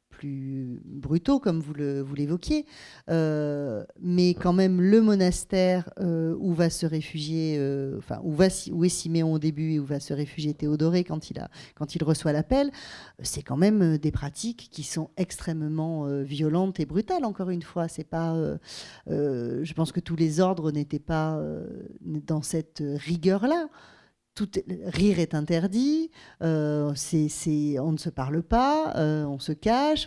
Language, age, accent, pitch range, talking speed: French, 40-59, French, 150-190 Hz, 155 wpm